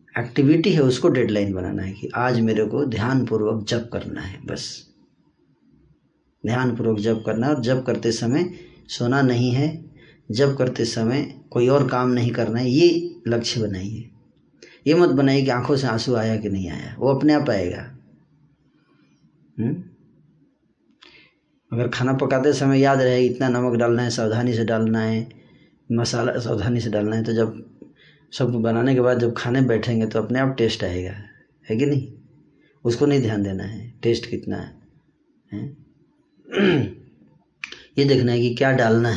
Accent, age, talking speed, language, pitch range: native, 20-39, 160 wpm, Hindi, 115-135 Hz